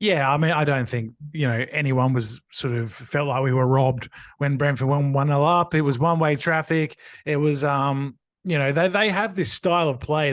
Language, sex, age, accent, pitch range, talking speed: English, male, 20-39, Australian, 140-175 Hz, 230 wpm